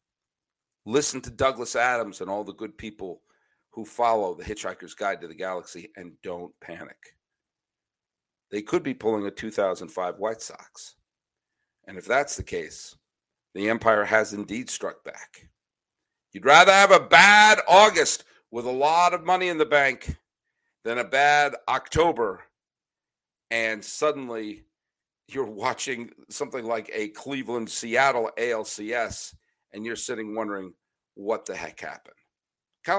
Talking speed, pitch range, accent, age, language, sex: 135 wpm, 115-185 Hz, American, 50-69, English, male